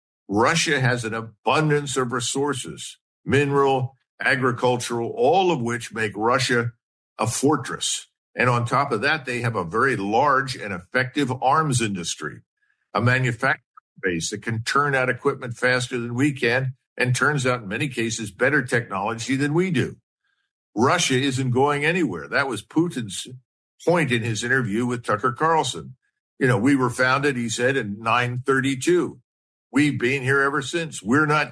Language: English